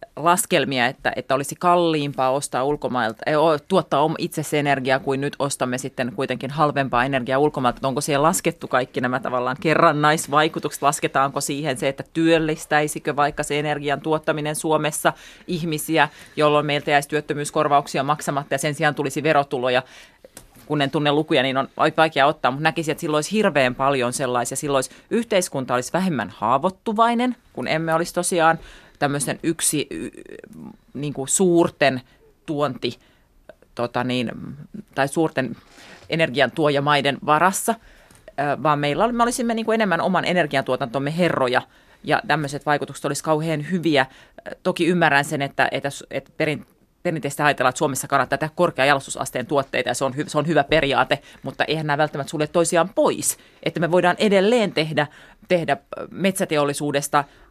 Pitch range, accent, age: 135-165 Hz, native, 30-49